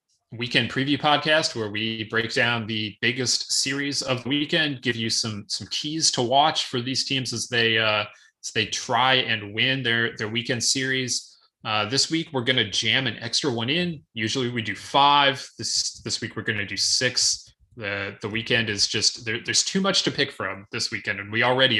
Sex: male